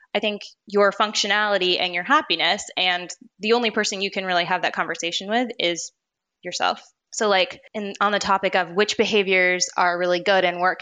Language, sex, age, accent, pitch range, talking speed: English, female, 20-39, American, 175-215 Hz, 190 wpm